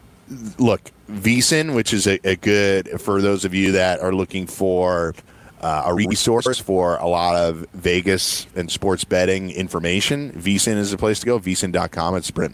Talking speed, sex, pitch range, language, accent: 170 wpm, male, 85-105 Hz, English, American